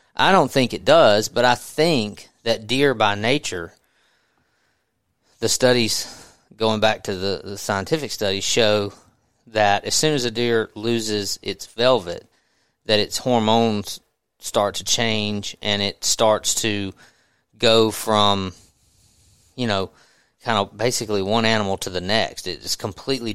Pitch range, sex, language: 105-125 Hz, male, English